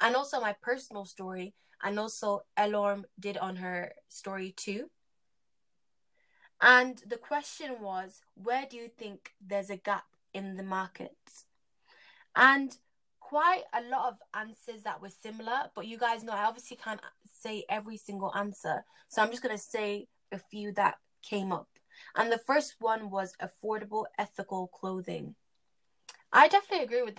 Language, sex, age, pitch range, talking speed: English, female, 20-39, 195-235 Hz, 155 wpm